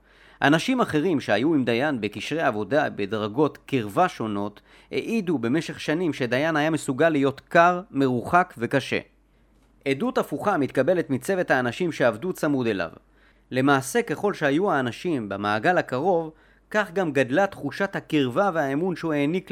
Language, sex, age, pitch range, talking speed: Hebrew, male, 30-49, 125-165 Hz, 130 wpm